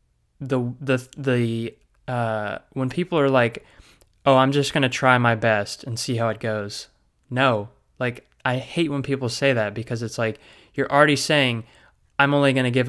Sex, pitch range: male, 115-135 Hz